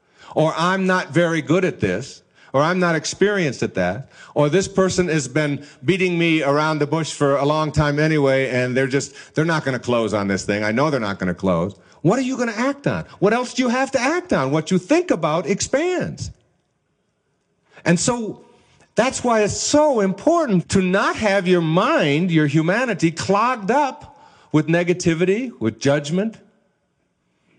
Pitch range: 140-205 Hz